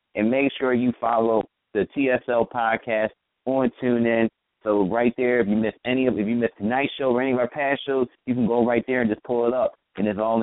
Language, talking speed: English, 240 wpm